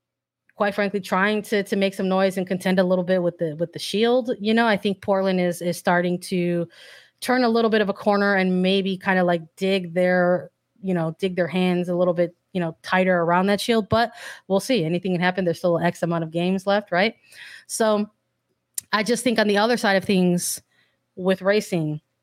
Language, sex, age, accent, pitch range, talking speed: English, female, 20-39, American, 180-215 Hz, 220 wpm